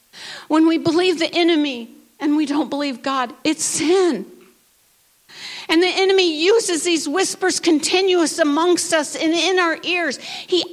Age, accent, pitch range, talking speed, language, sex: 50-69, American, 310-380 Hz, 145 wpm, English, female